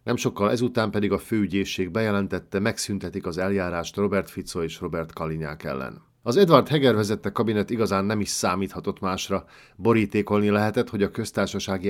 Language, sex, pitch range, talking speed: Hungarian, male, 90-105 Hz, 155 wpm